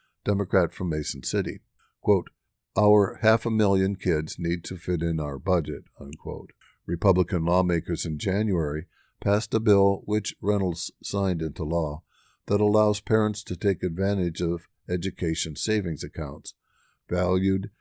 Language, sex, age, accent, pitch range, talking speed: English, male, 60-79, American, 85-105 Hz, 135 wpm